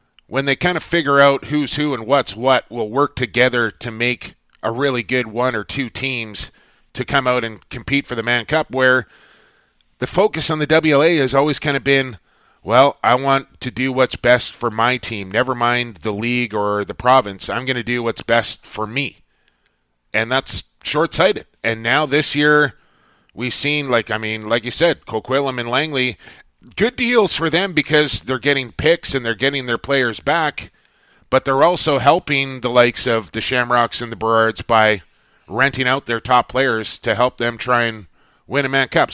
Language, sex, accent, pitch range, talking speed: English, male, American, 115-140 Hz, 195 wpm